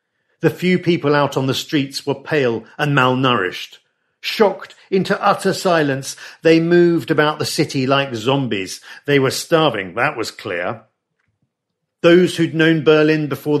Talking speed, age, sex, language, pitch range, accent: 145 wpm, 50-69, male, English, 130-165 Hz, British